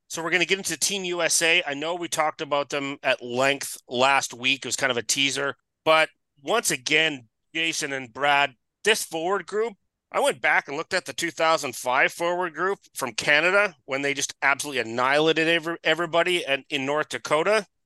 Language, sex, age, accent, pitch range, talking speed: English, male, 30-49, American, 140-180 Hz, 180 wpm